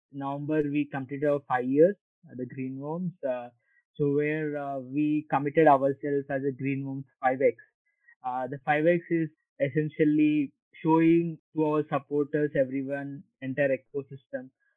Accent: Indian